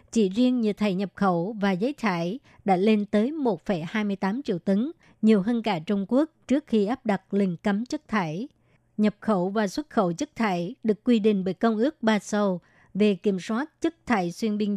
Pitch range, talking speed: 200-235 Hz, 200 wpm